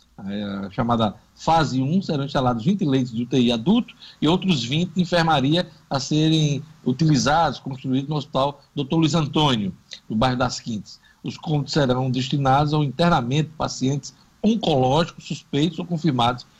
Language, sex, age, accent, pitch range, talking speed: Portuguese, male, 60-79, Brazilian, 125-165 Hz, 150 wpm